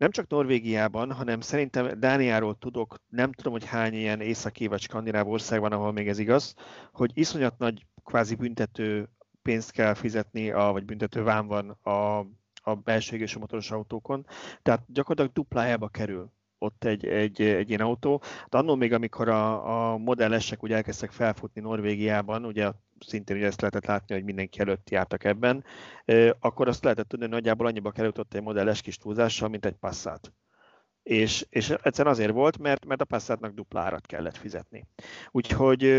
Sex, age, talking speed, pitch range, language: male, 30-49, 165 wpm, 105-115 Hz, Hungarian